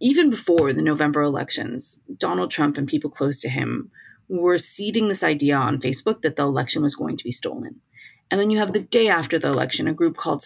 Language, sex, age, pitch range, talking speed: English, female, 30-49, 150-225 Hz, 220 wpm